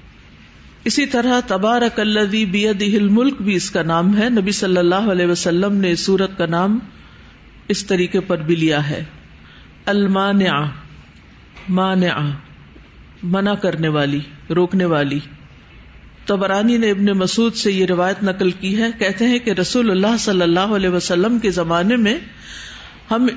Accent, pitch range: Indian, 165-210 Hz